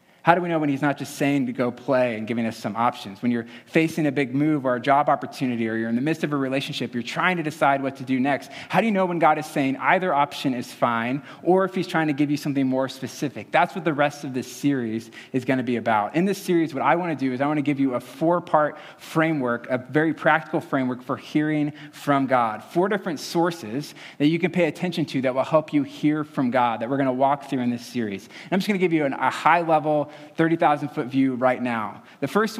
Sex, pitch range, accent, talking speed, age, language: male, 135-160 Hz, American, 255 wpm, 20-39, English